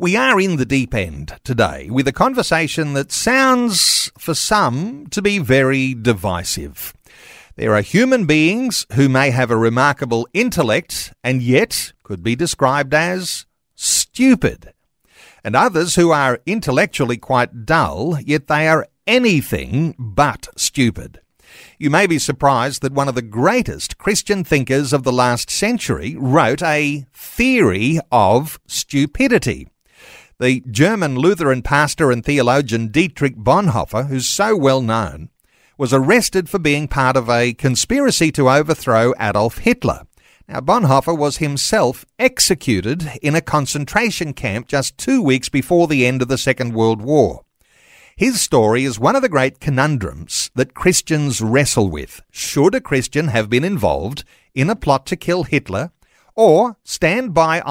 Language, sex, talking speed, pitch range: English, male, 145 wpm, 125-165 Hz